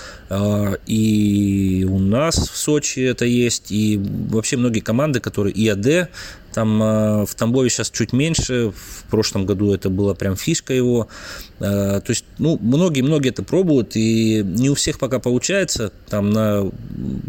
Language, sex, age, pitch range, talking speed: Russian, male, 20-39, 100-125 Hz, 145 wpm